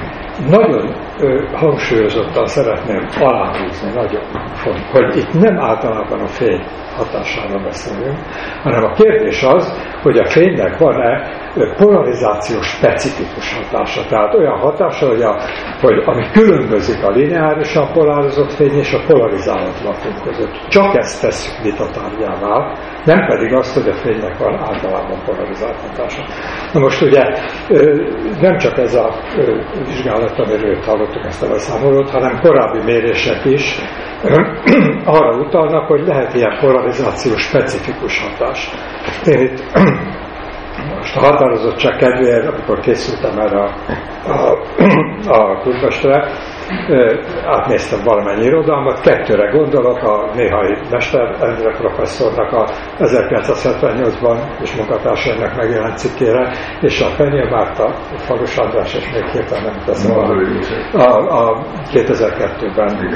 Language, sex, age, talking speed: Hungarian, male, 60-79, 115 wpm